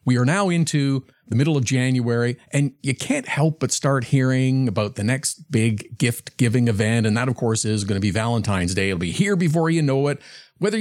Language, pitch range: English, 125-180 Hz